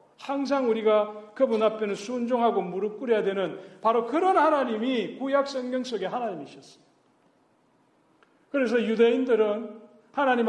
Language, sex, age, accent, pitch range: Korean, male, 40-59, native, 215-270 Hz